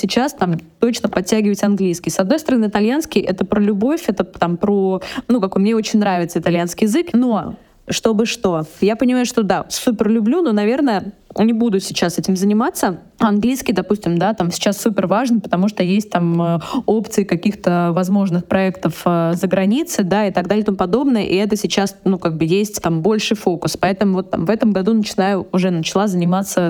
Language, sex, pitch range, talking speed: Russian, female, 185-220 Hz, 185 wpm